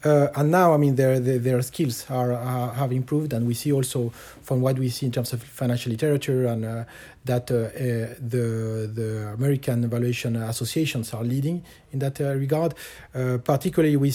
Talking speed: 190 wpm